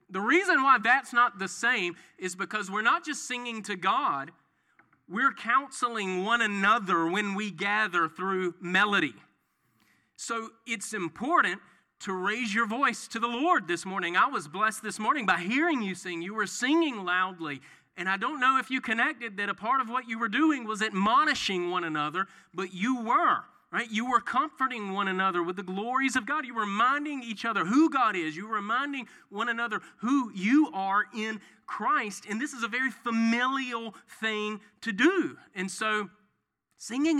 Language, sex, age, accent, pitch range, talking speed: English, male, 30-49, American, 190-255 Hz, 180 wpm